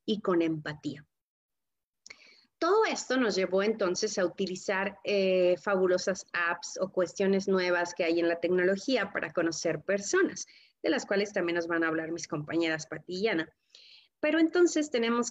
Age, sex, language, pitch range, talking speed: 30-49, female, Spanish, 185-240 Hz, 155 wpm